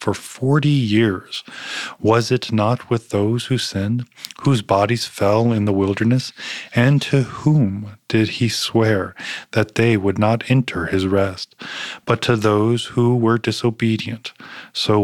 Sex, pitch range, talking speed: male, 100-125 Hz, 145 wpm